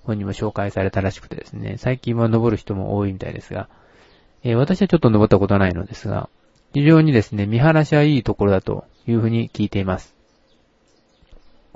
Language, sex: Japanese, male